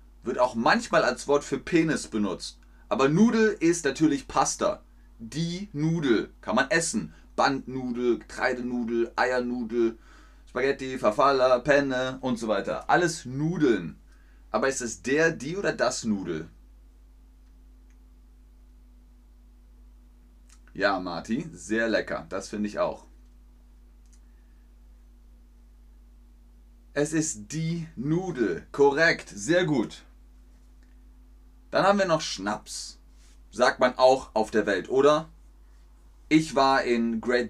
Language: German